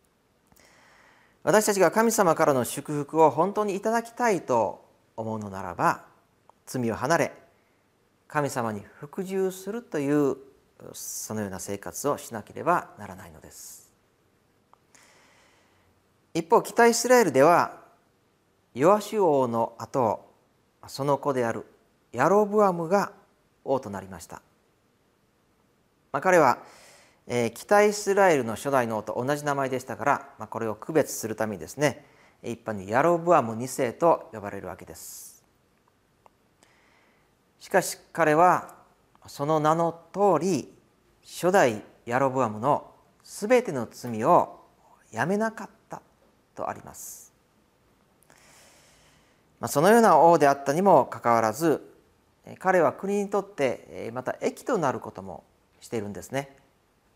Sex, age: male, 40-59